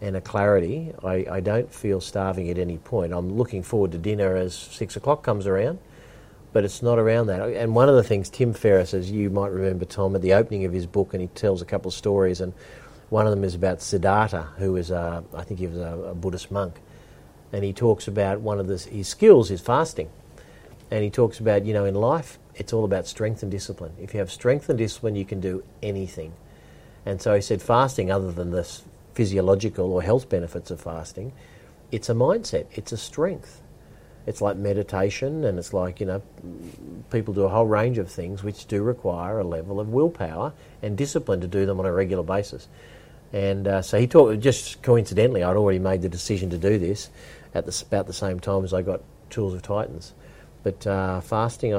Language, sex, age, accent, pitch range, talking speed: English, male, 50-69, Australian, 95-110 Hz, 215 wpm